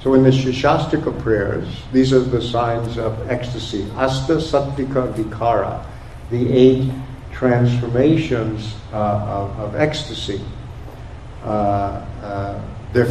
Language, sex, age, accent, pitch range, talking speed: English, male, 60-79, American, 105-130 Hz, 110 wpm